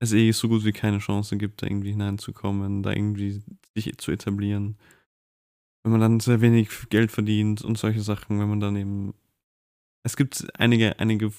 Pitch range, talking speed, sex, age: 100-110 Hz, 180 wpm, male, 20-39